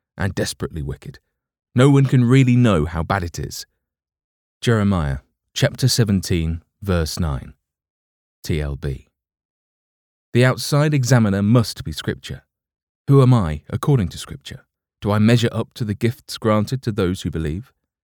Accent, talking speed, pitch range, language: British, 140 wpm, 90-125 Hz, English